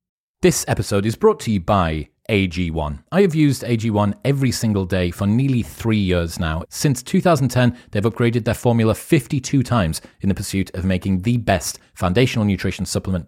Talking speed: 170 wpm